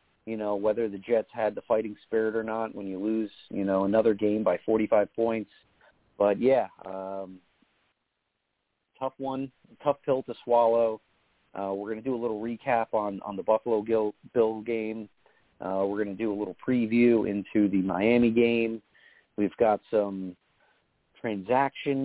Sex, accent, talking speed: male, American, 165 wpm